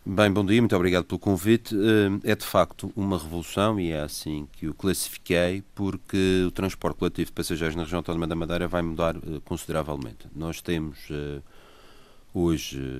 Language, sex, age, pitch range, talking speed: Portuguese, male, 40-59, 80-95 Hz, 155 wpm